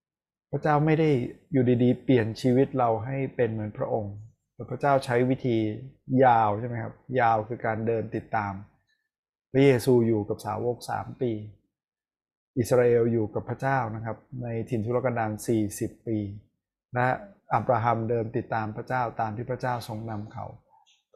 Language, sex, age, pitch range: Thai, male, 20-39, 110-135 Hz